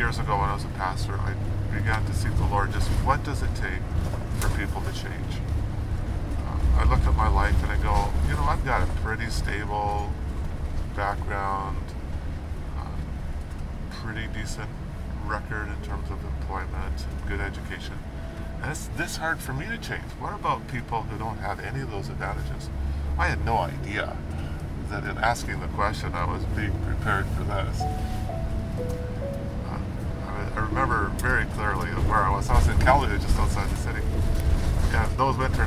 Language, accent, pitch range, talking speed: English, American, 75-100 Hz, 170 wpm